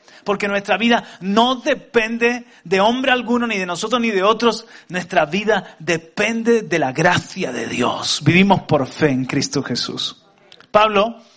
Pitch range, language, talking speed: 160-200 Hz, Spanish, 155 wpm